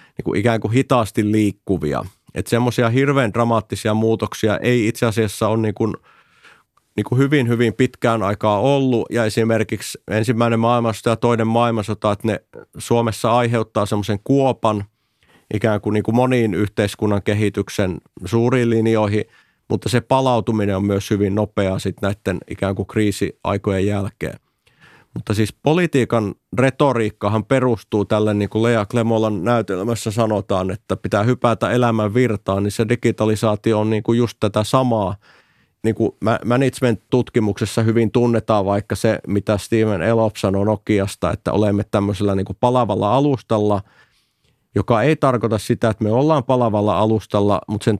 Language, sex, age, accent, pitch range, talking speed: Finnish, male, 30-49, native, 105-120 Hz, 140 wpm